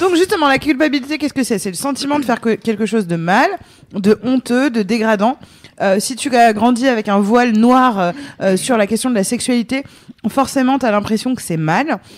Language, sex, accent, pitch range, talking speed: French, female, French, 200-255 Hz, 210 wpm